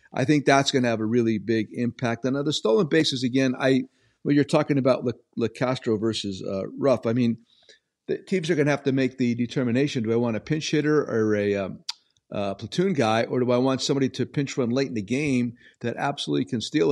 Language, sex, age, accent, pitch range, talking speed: English, male, 50-69, American, 115-140 Hz, 240 wpm